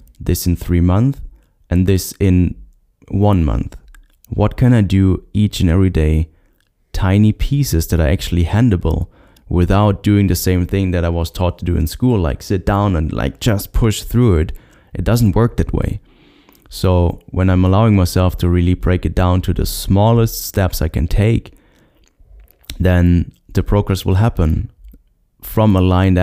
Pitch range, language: 80-95 Hz, English